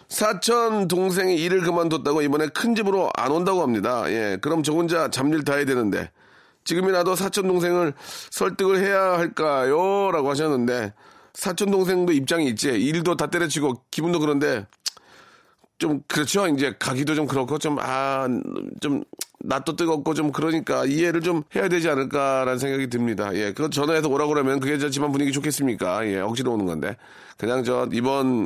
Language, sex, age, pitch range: Korean, male, 30-49, 130-175 Hz